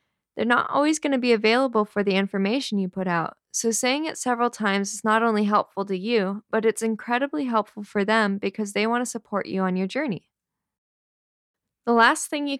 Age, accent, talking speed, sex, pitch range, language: 10-29, American, 205 wpm, female, 195-240 Hz, English